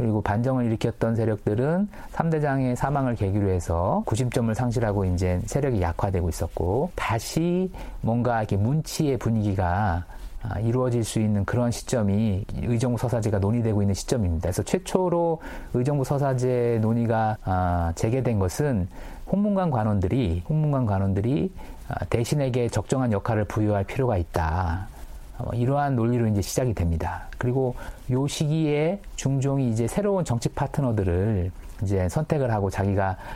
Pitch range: 100-135 Hz